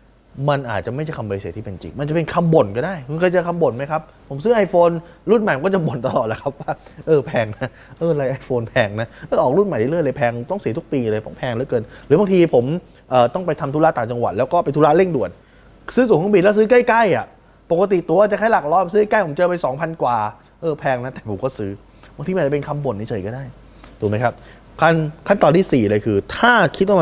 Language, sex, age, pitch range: Thai, male, 20-39, 115-165 Hz